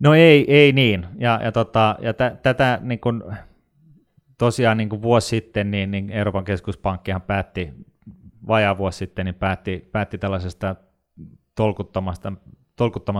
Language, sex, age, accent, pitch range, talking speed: Finnish, male, 30-49, native, 95-110 Hz, 125 wpm